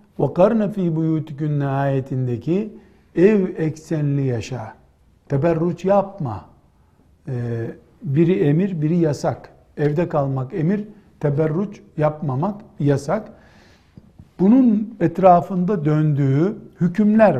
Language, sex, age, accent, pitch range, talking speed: Turkish, male, 60-79, native, 145-185 Hz, 85 wpm